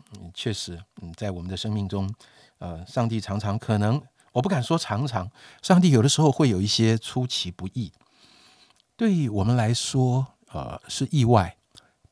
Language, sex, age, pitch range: Chinese, male, 50-69, 95-125 Hz